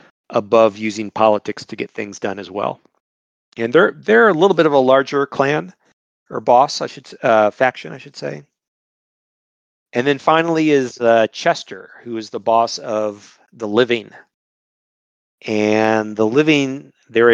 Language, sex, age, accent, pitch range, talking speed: English, male, 40-59, American, 105-135 Hz, 155 wpm